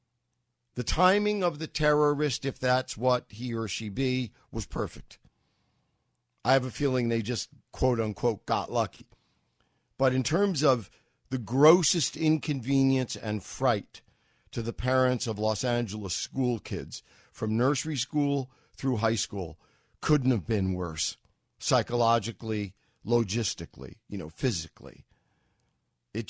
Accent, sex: American, male